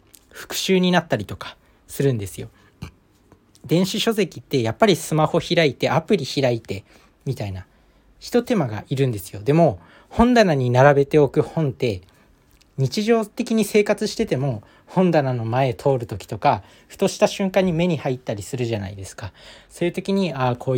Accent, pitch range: native, 110-175 Hz